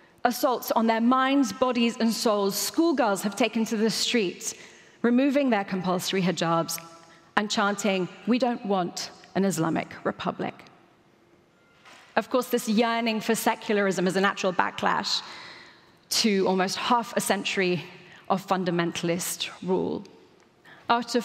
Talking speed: 125 wpm